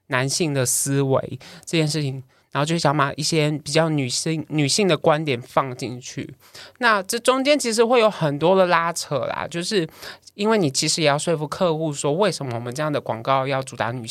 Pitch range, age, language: 135-180 Hz, 20-39, Chinese